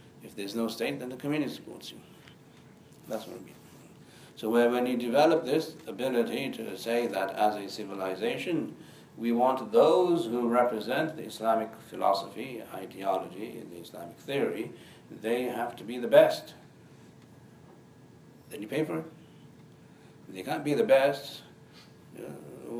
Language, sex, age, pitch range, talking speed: English, male, 60-79, 100-125 Hz, 145 wpm